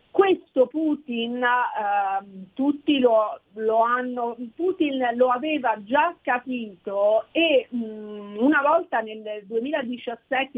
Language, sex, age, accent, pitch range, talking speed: Italian, female, 40-59, native, 215-270 Hz, 100 wpm